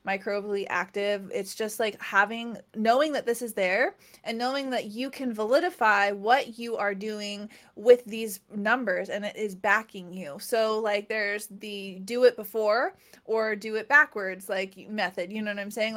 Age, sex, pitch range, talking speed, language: 20-39, female, 205-250 Hz, 175 wpm, English